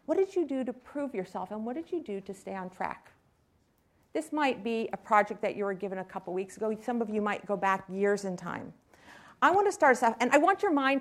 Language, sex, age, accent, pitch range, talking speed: English, female, 50-69, American, 200-270 Hz, 265 wpm